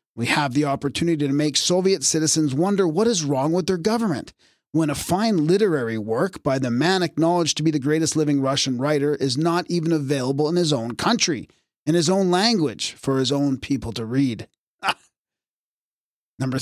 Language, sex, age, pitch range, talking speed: English, male, 30-49, 130-170 Hz, 180 wpm